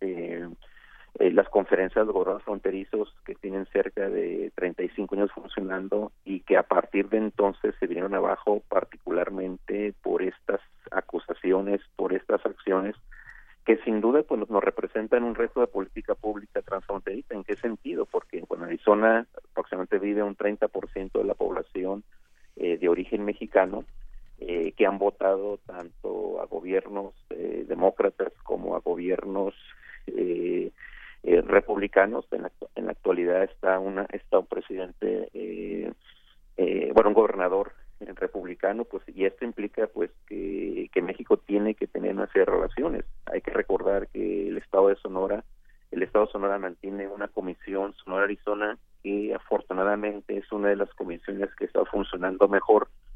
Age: 40-59